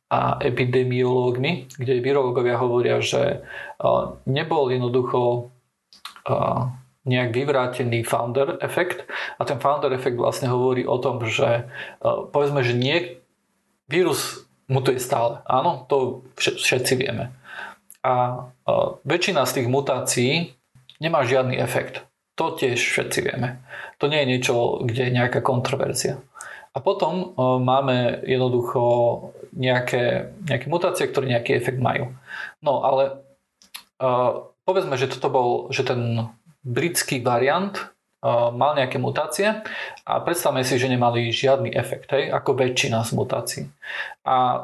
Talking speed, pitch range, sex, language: 120 wpm, 125-140 Hz, male, Slovak